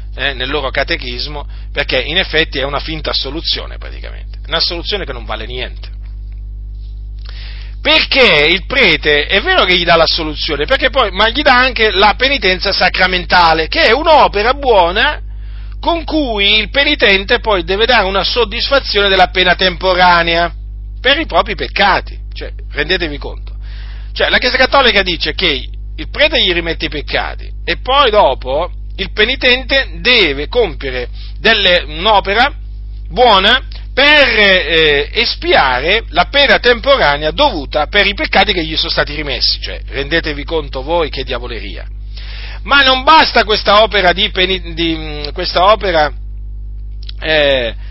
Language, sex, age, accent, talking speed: Italian, male, 40-59, native, 140 wpm